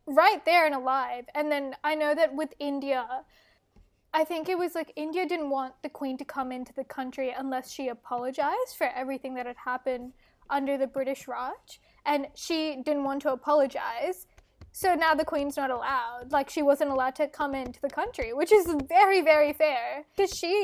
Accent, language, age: Australian, English, 10-29